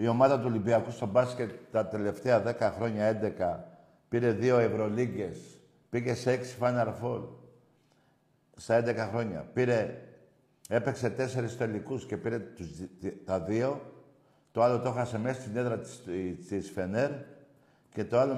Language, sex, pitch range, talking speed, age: Greek, male, 105-130 Hz, 140 wpm, 60-79